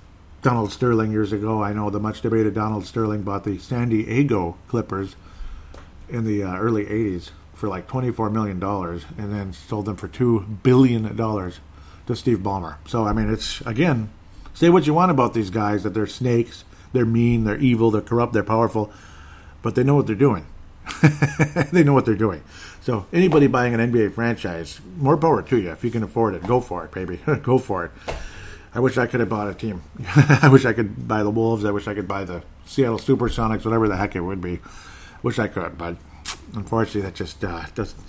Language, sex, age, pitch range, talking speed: English, male, 50-69, 90-115 Hz, 205 wpm